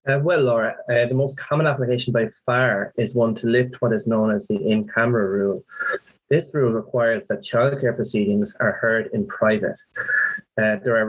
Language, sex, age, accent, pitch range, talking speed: English, male, 30-49, Irish, 105-125 Hz, 190 wpm